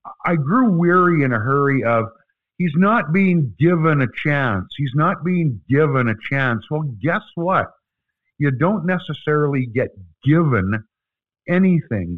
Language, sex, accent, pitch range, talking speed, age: English, male, American, 130-180 Hz, 140 wpm, 50-69